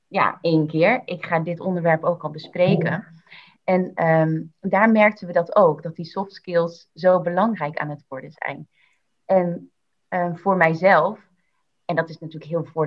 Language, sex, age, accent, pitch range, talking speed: Dutch, female, 30-49, Dutch, 160-185 Hz, 165 wpm